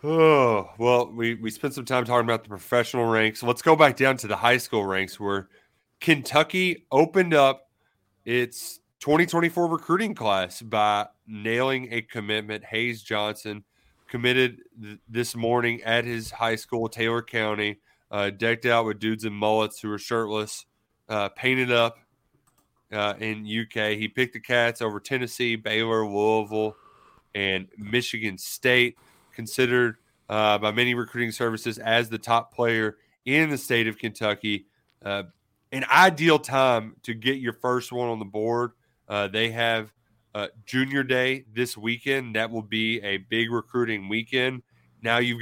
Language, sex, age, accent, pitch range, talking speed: English, male, 30-49, American, 110-125 Hz, 155 wpm